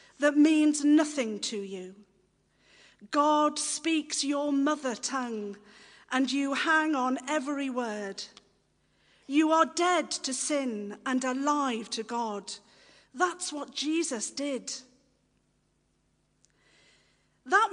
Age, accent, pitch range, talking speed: 50-69, British, 240-315 Hz, 100 wpm